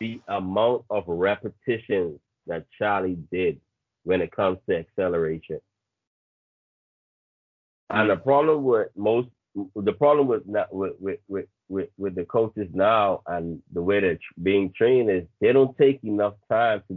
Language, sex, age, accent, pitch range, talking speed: English, male, 30-49, American, 95-120 Hz, 140 wpm